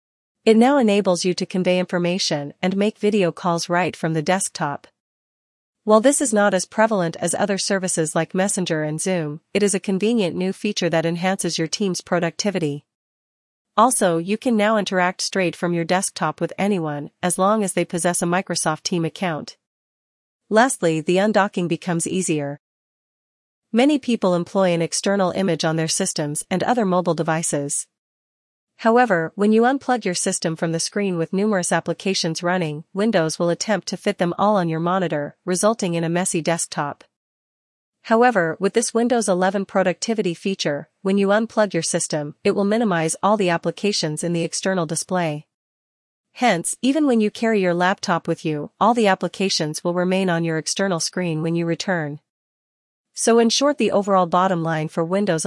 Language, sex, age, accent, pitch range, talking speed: English, female, 40-59, American, 165-205 Hz, 170 wpm